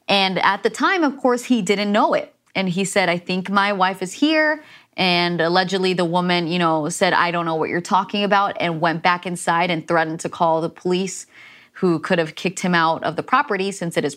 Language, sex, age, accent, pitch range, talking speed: English, female, 30-49, American, 175-205 Hz, 235 wpm